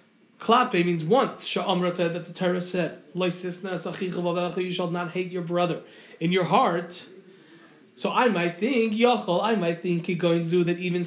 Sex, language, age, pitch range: male, English, 30-49, 175-225 Hz